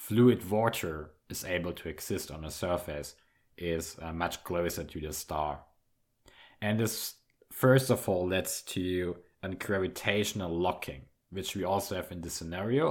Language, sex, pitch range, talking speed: English, male, 85-110 Hz, 150 wpm